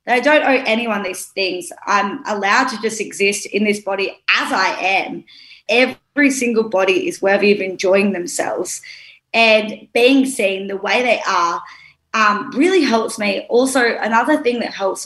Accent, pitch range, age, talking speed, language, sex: Australian, 195-230 Hz, 20-39, 165 wpm, English, female